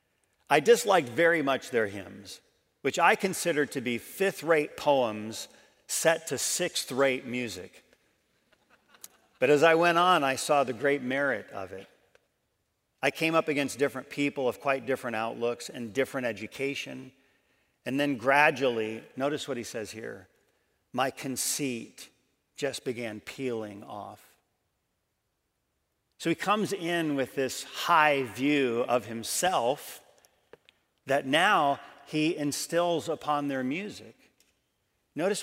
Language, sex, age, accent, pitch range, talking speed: English, male, 50-69, American, 120-150 Hz, 125 wpm